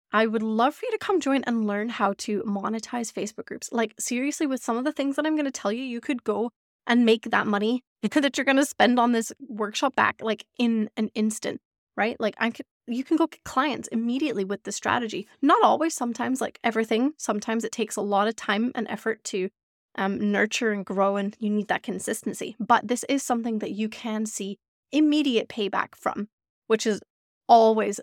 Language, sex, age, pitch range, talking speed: English, female, 20-39, 210-255 Hz, 210 wpm